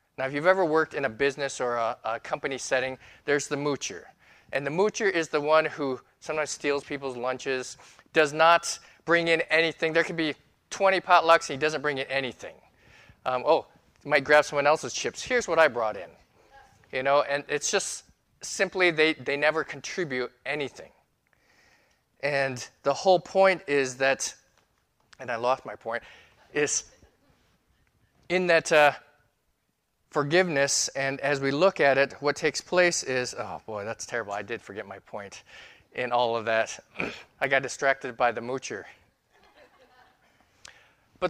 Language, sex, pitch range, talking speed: English, male, 140-175 Hz, 165 wpm